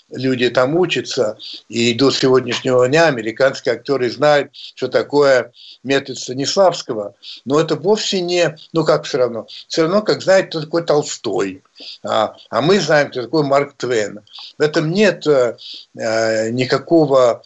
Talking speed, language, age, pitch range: 140 wpm, Russian, 60-79, 130-170 Hz